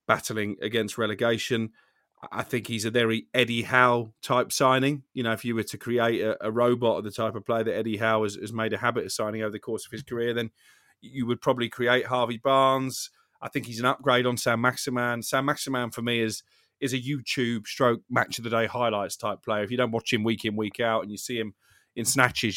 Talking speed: 235 wpm